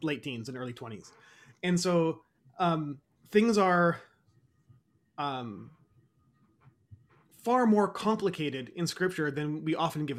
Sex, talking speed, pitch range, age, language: male, 120 wpm, 140-180 Hz, 30-49, English